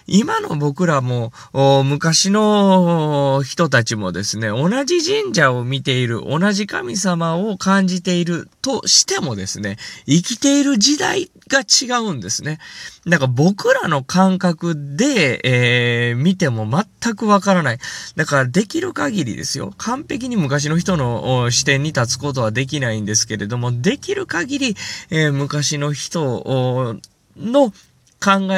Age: 20-39